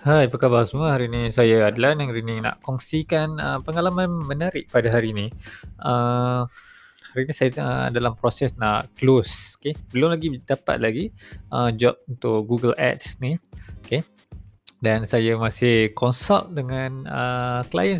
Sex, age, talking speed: male, 20-39, 165 wpm